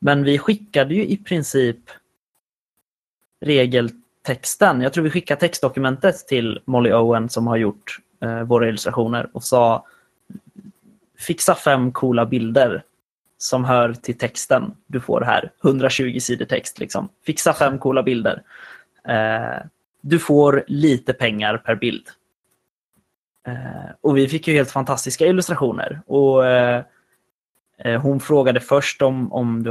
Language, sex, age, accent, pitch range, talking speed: Swedish, male, 20-39, native, 120-145 Hz, 130 wpm